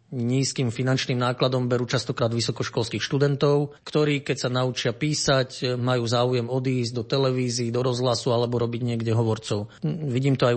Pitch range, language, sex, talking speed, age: 120-135 Hz, Slovak, male, 150 wpm, 30-49